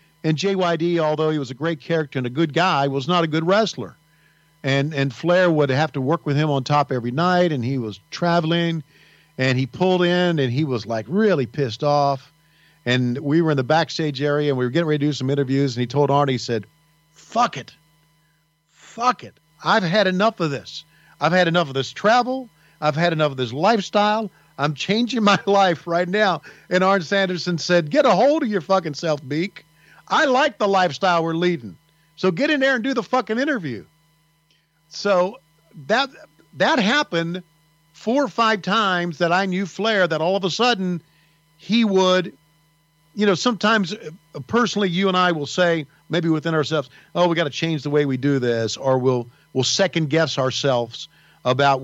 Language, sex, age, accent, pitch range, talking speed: English, male, 50-69, American, 145-190 Hz, 195 wpm